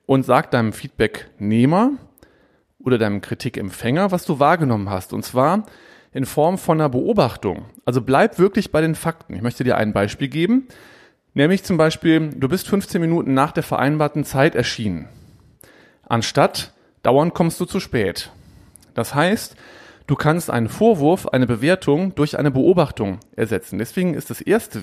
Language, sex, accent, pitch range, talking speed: German, male, German, 120-185 Hz, 155 wpm